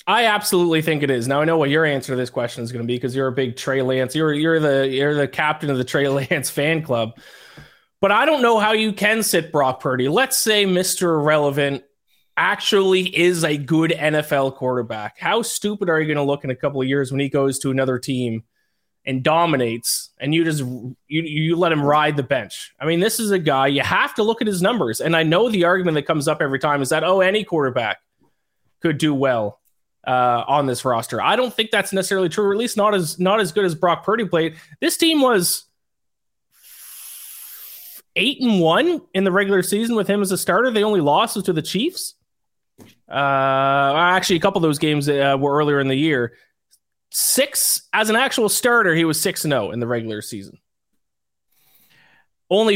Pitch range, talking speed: 140-200 Hz, 215 wpm